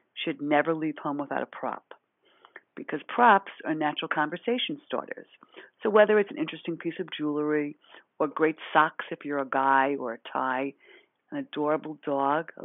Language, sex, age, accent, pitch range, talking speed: English, female, 50-69, American, 145-180 Hz, 165 wpm